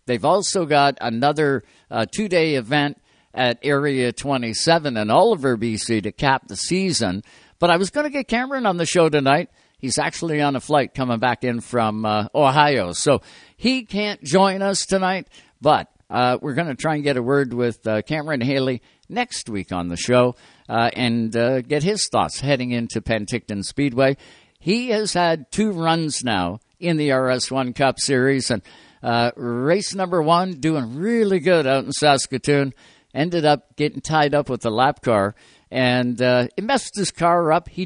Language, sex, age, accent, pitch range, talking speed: English, male, 60-79, American, 125-175 Hz, 180 wpm